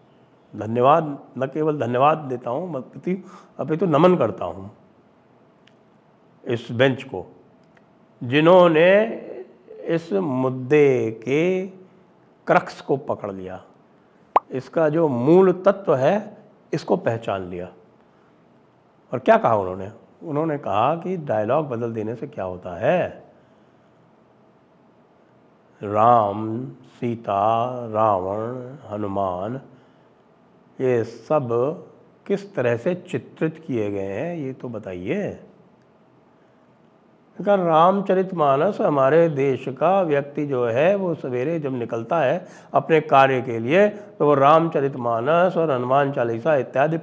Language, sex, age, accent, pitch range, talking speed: English, male, 60-79, Indian, 115-165 Hz, 110 wpm